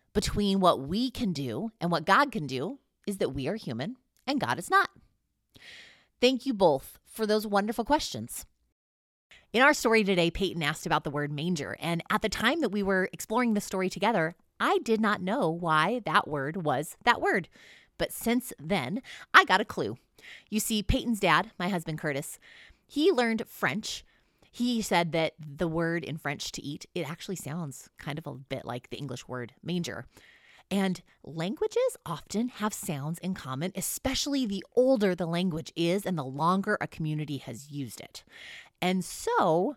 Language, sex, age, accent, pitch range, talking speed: English, female, 20-39, American, 150-220 Hz, 180 wpm